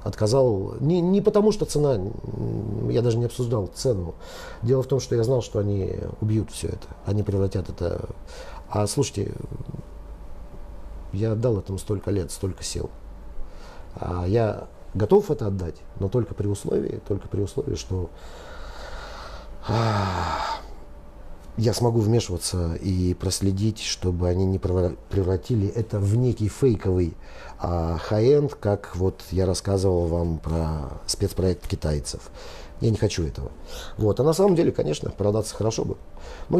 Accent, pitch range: native, 90-115 Hz